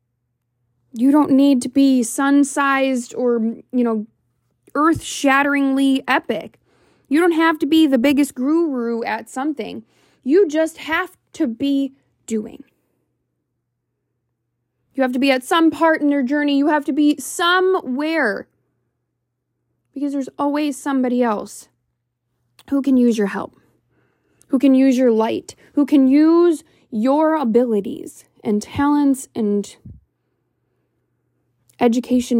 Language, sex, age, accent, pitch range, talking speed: English, female, 20-39, American, 205-280 Hz, 120 wpm